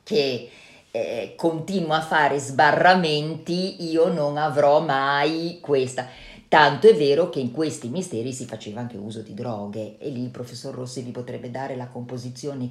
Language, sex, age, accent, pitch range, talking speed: Italian, female, 40-59, native, 120-160 Hz, 160 wpm